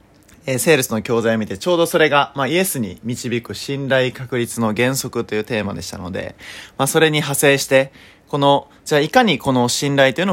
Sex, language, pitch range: male, Japanese, 105-160 Hz